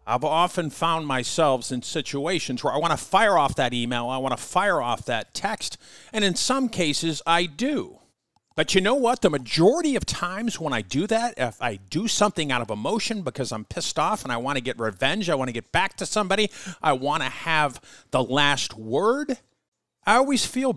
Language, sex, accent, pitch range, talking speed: English, male, American, 130-215 Hz, 210 wpm